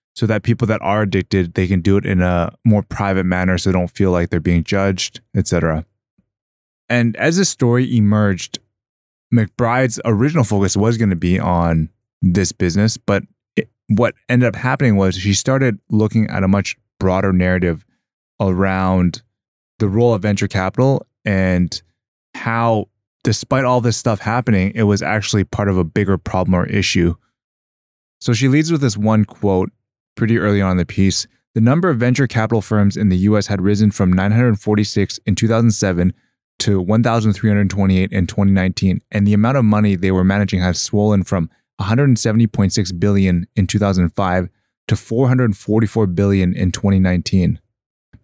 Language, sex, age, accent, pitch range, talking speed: English, male, 20-39, American, 95-115 Hz, 160 wpm